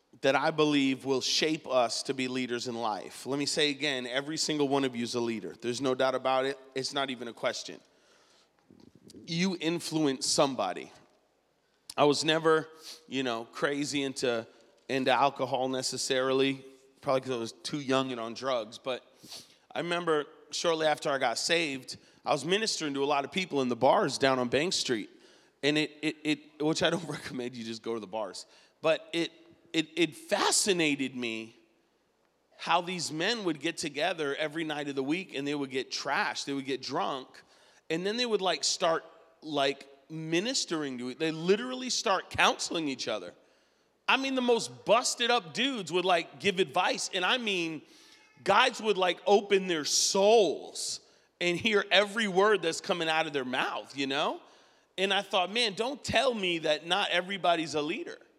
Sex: male